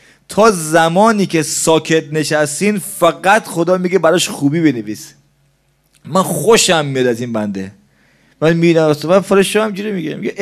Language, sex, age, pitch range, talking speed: Persian, male, 30-49, 140-185 Hz, 145 wpm